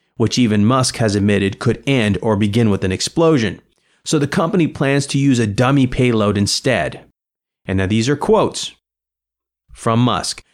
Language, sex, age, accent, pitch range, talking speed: English, male, 30-49, American, 100-145 Hz, 165 wpm